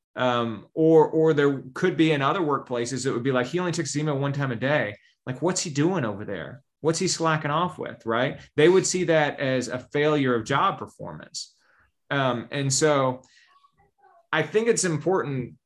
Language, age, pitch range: English, 30-49, 125-155 Hz